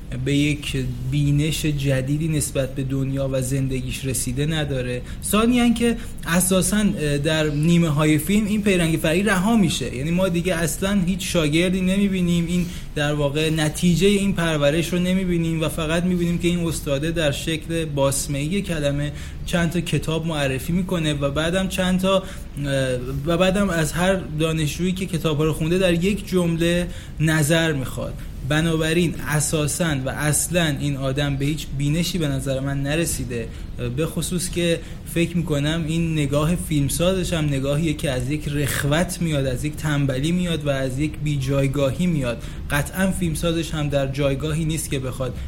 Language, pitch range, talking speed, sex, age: English, 140-175 Hz, 150 wpm, male, 30-49